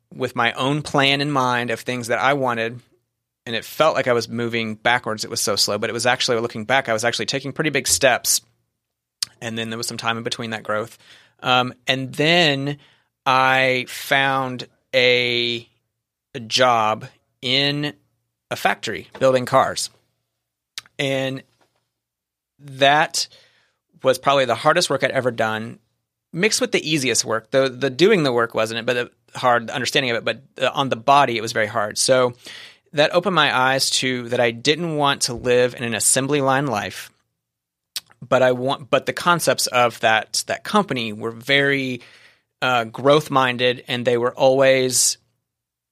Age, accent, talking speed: 30-49, American, 170 wpm